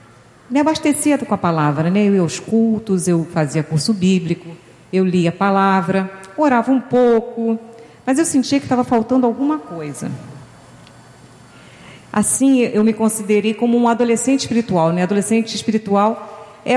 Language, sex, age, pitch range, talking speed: Portuguese, female, 40-59, 180-235 Hz, 145 wpm